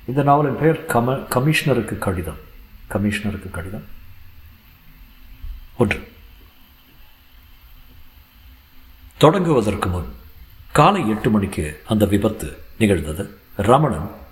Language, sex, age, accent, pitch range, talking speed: Tamil, male, 50-69, native, 95-120 Hz, 50 wpm